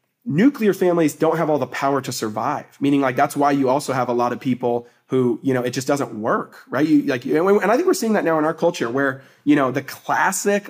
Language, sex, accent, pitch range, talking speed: English, male, American, 135-175 Hz, 250 wpm